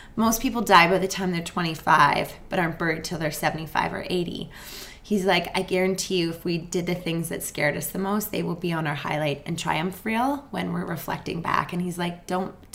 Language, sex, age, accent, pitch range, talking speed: English, female, 20-39, American, 165-190 Hz, 225 wpm